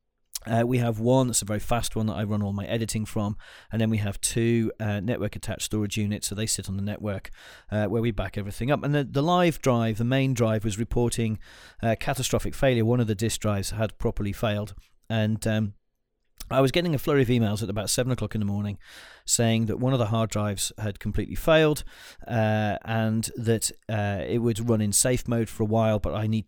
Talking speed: 225 wpm